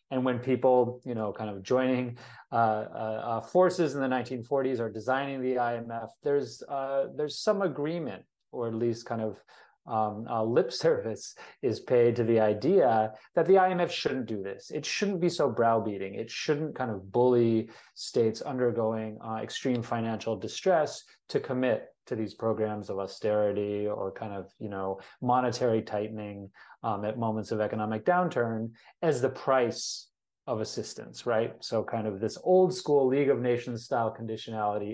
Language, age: English, 30-49